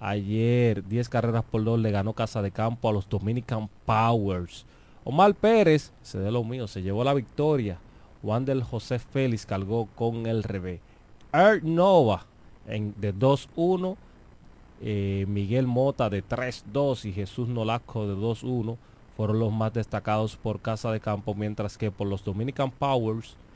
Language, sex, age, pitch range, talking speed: Spanish, male, 30-49, 105-125 Hz, 155 wpm